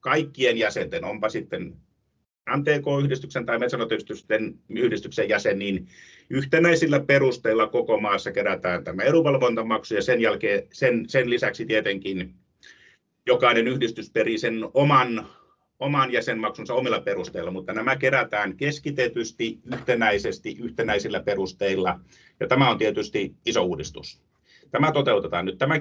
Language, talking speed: Finnish, 115 wpm